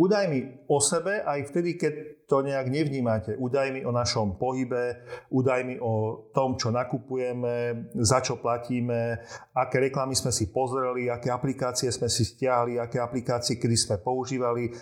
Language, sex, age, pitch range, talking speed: Slovak, male, 40-59, 120-150 Hz, 145 wpm